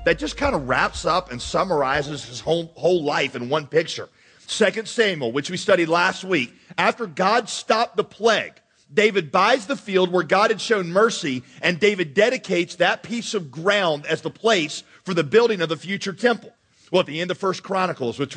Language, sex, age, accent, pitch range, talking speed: English, male, 40-59, American, 155-215 Hz, 200 wpm